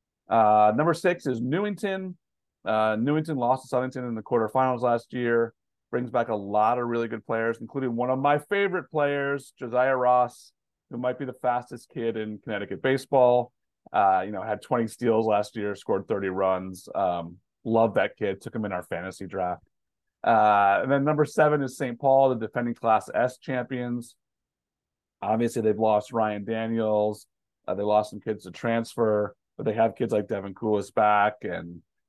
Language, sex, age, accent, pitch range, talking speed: English, male, 30-49, American, 100-125 Hz, 180 wpm